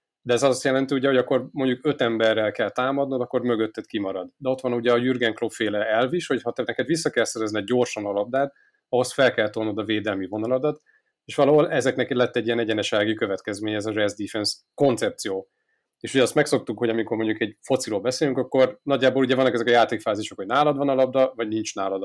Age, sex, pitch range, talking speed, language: 30-49, male, 110-135 Hz, 210 wpm, Hungarian